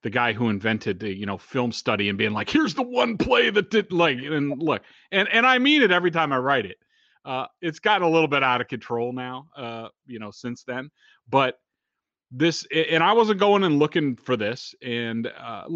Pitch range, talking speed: 110-150 Hz, 220 wpm